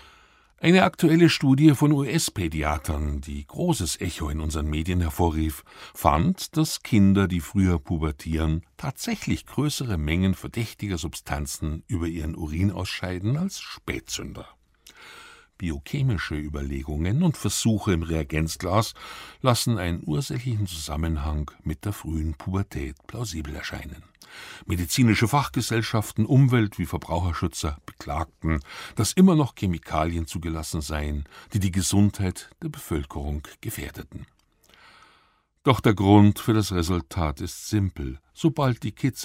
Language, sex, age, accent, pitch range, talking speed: German, male, 60-79, German, 80-120 Hz, 115 wpm